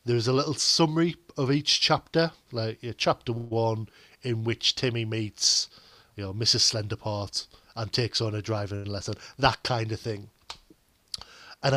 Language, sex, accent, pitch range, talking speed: English, male, British, 115-140 Hz, 155 wpm